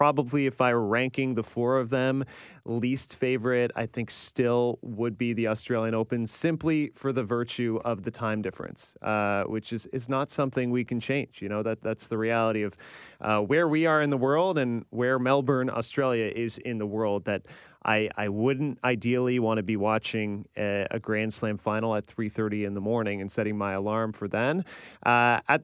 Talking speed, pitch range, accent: 200 wpm, 110-135 Hz, American